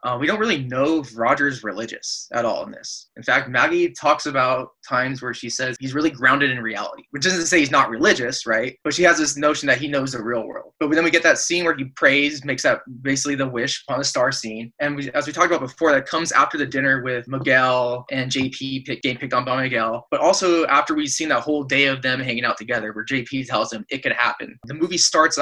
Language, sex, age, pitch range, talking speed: English, male, 20-39, 125-150 Hz, 250 wpm